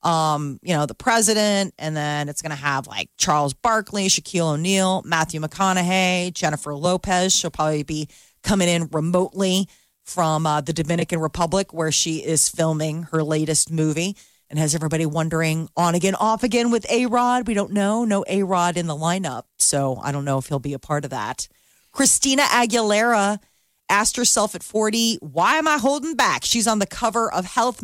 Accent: American